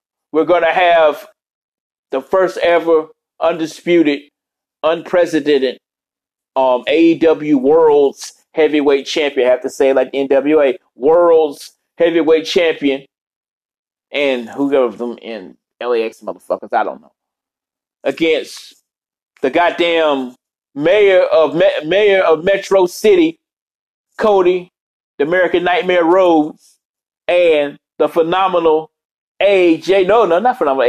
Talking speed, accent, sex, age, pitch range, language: 105 wpm, American, male, 30-49, 145-210 Hz, English